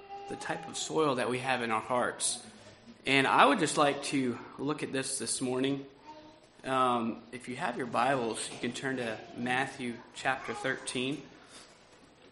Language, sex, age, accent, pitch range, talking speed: English, male, 20-39, American, 125-145 Hz, 165 wpm